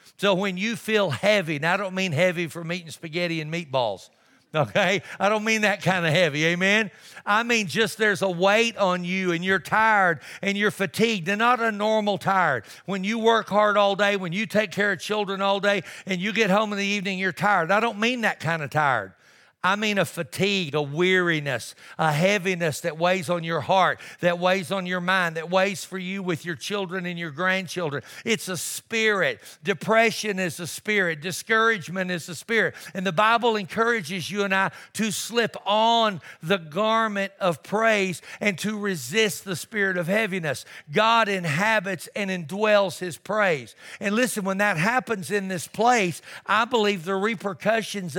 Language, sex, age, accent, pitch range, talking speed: English, male, 60-79, American, 175-210 Hz, 190 wpm